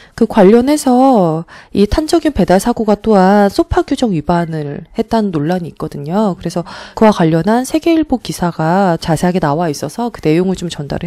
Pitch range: 170-235 Hz